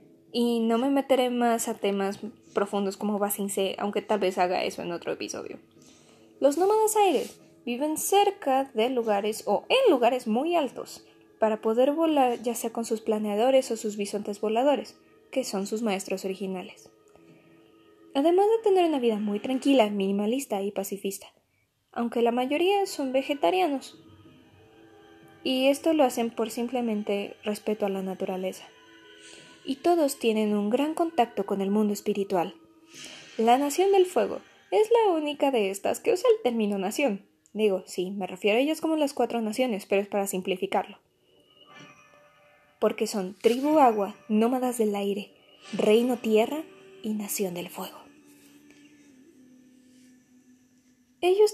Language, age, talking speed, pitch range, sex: Spanish, 10-29, 145 wpm, 205-280 Hz, female